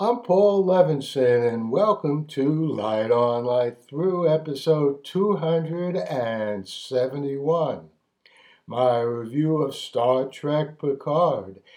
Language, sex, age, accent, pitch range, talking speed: English, male, 60-79, American, 125-165 Hz, 90 wpm